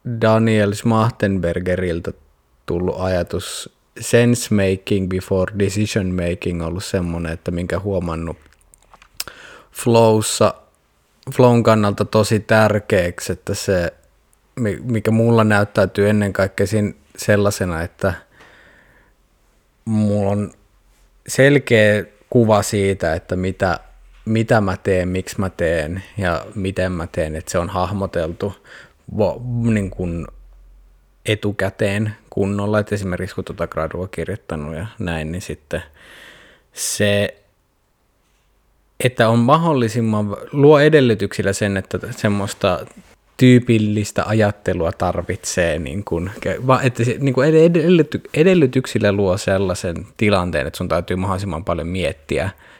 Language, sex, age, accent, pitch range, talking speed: Finnish, male, 20-39, native, 90-110 Hz, 105 wpm